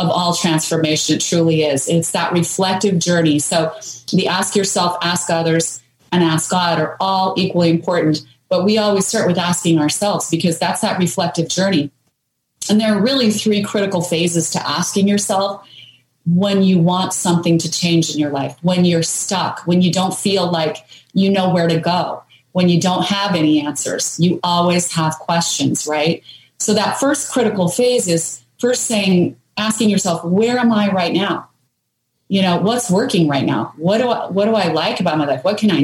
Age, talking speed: 30-49, 185 wpm